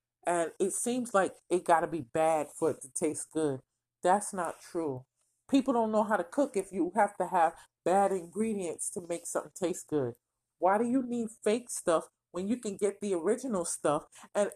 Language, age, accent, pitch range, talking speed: English, 40-59, American, 180-235 Hz, 200 wpm